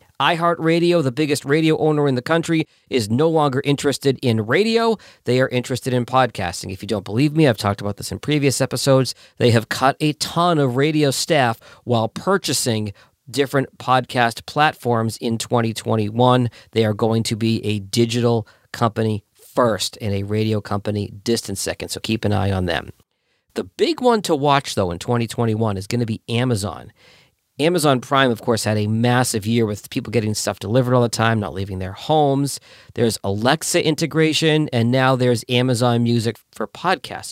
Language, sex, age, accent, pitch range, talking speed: English, male, 40-59, American, 110-140 Hz, 180 wpm